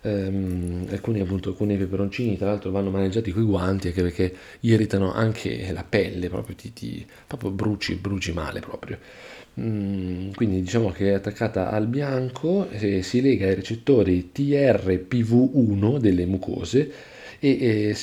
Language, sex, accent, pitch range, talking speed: Italian, male, native, 95-115 Hz, 145 wpm